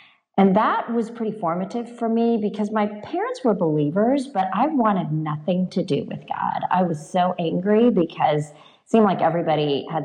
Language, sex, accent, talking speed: English, female, American, 180 wpm